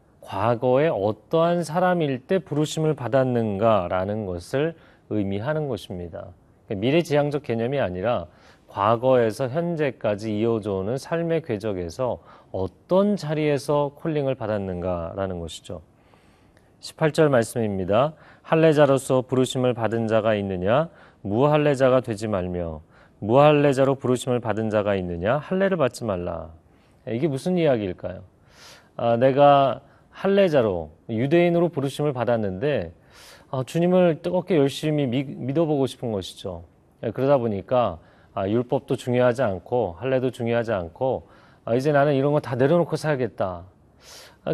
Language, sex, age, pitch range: Korean, male, 40-59, 105-150 Hz